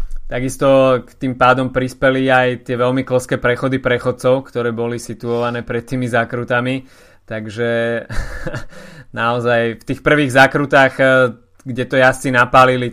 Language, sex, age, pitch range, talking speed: Slovak, male, 20-39, 115-130 Hz, 125 wpm